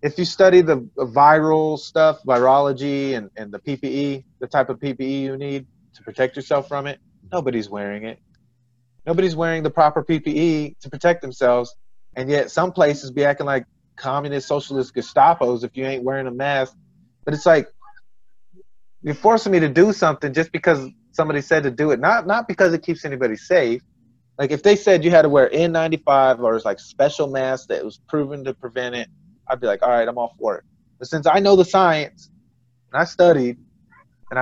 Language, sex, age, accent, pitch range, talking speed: English, male, 30-49, American, 125-165 Hz, 190 wpm